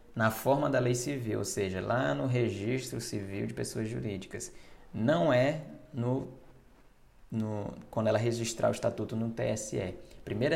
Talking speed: 135 wpm